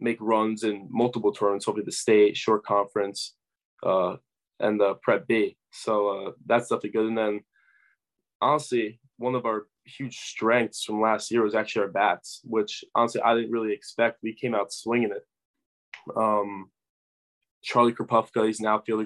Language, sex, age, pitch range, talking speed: English, male, 20-39, 105-115 Hz, 165 wpm